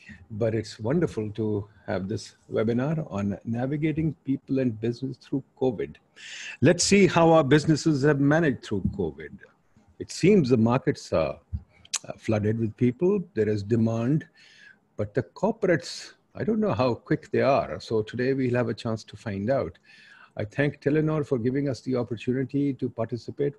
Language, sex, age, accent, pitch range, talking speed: English, male, 50-69, Indian, 105-140 Hz, 160 wpm